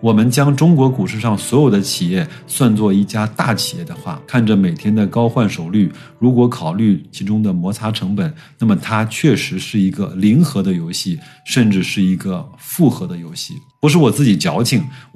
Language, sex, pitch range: Chinese, male, 105-150 Hz